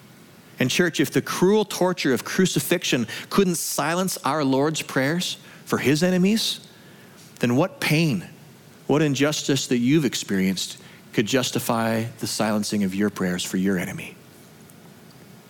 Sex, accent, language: male, American, English